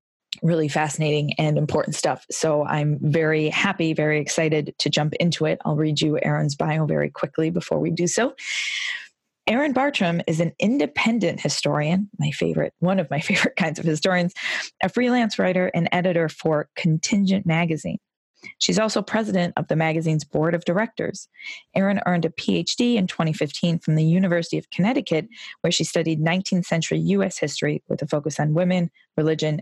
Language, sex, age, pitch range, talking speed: English, female, 20-39, 155-185 Hz, 165 wpm